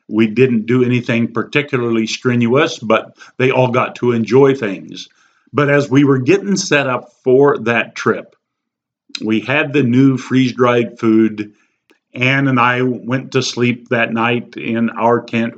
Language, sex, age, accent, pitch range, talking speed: English, male, 50-69, American, 115-140 Hz, 155 wpm